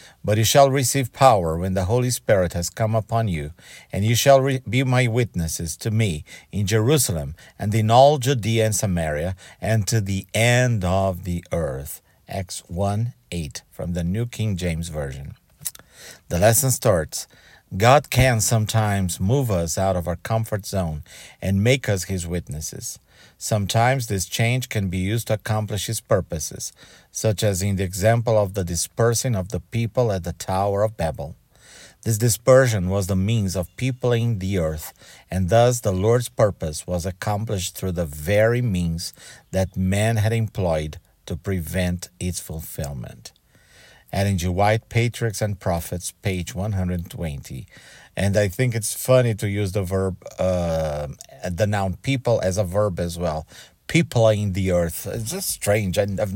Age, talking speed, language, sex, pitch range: 50-69, 160 wpm, English, male, 90-115 Hz